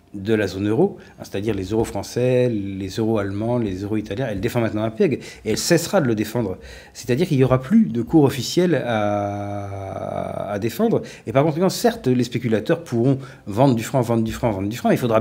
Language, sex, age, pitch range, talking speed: French, male, 40-59, 105-135 Hz, 220 wpm